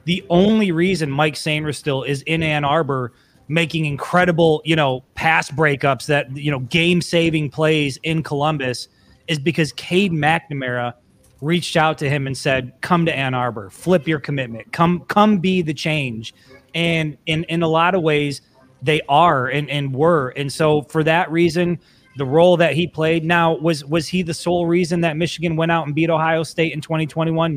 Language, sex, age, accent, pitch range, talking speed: English, male, 30-49, American, 140-165 Hz, 185 wpm